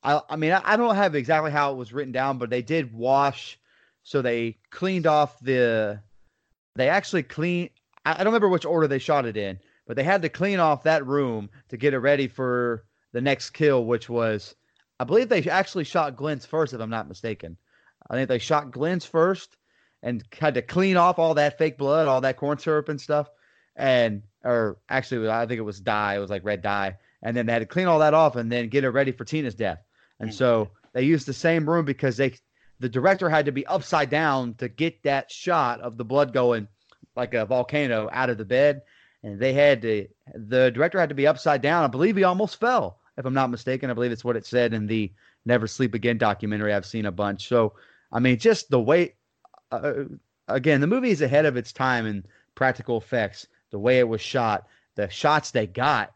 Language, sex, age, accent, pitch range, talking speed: English, male, 30-49, American, 115-155 Hz, 225 wpm